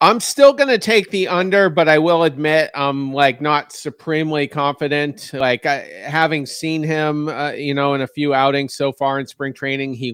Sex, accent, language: male, American, English